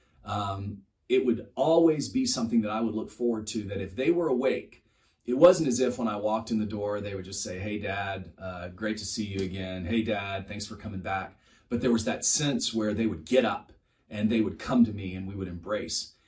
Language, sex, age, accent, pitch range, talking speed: English, male, 30-49, American, 105-130 Hz, 240 wpm